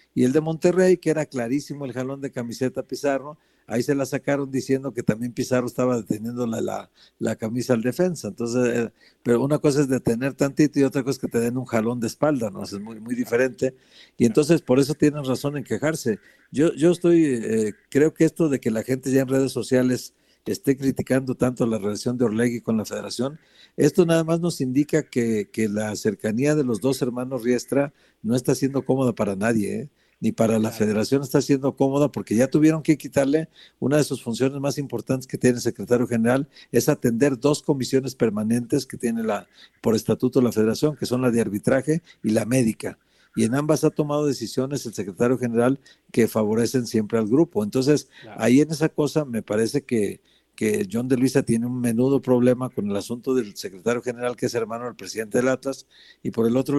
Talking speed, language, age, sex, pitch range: 210 wpm, Spanish, 50-69, male, 115-140 Hz